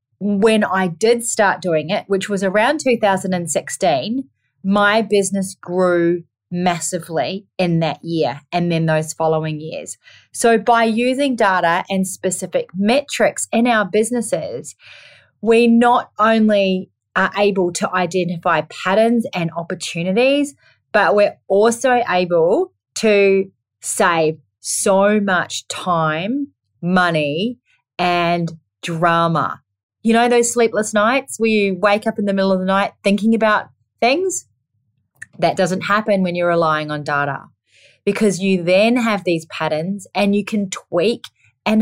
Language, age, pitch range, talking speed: English, 30-49, 170-225 Hz, 130 wpm